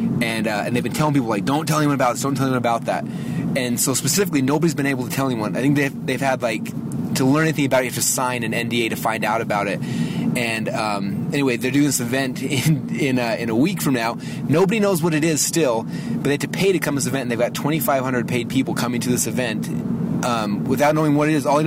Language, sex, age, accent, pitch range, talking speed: English, male, 30-49, American, 125-155 Hz, 270 wpm